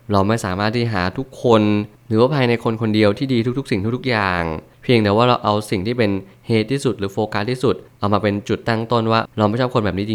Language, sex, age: Thai, male, 20-39